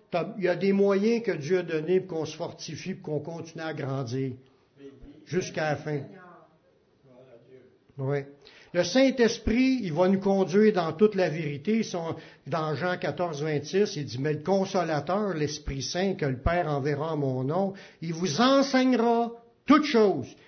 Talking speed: 155 wpm